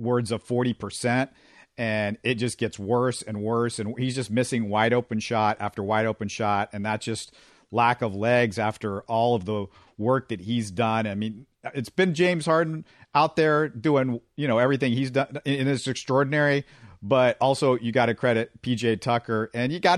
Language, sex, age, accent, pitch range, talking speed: English, male, 50-69, American, 110-130 Hz, 190 wpm